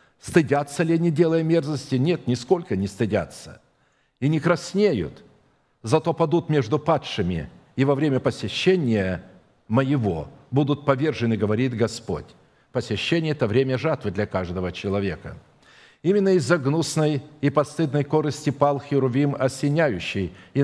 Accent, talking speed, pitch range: native, 125 wpm, 120-150 Hz